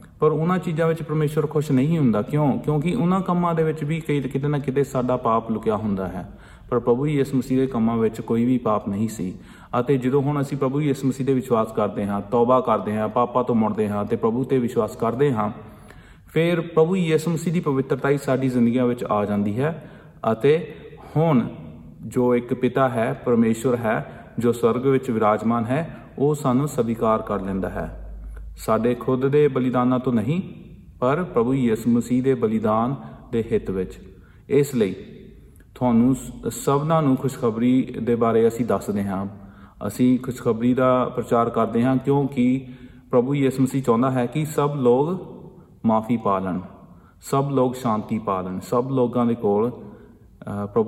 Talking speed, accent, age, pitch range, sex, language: 120 wpm, Indian, 30-49, 110-140 Hz, male, English